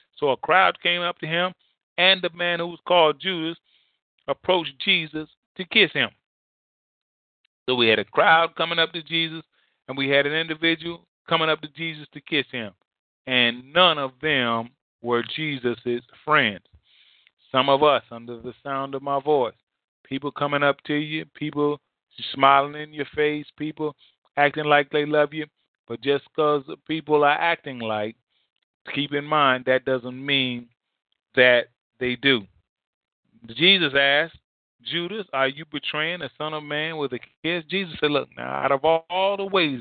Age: 30-49